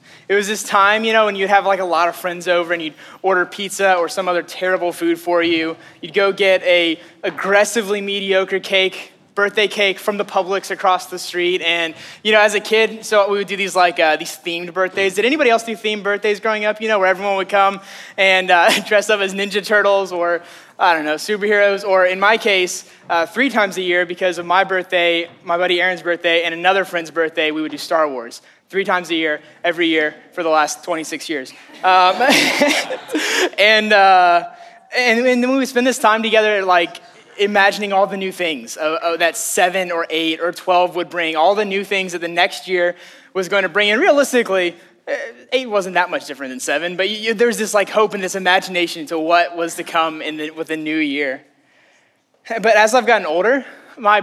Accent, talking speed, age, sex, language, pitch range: American, 215 wpm, 20-39, male, English, 170-205 Hz